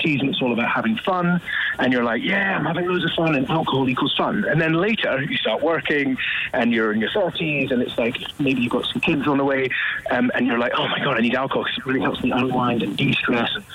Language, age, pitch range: English, 30-49, 125-175 Hz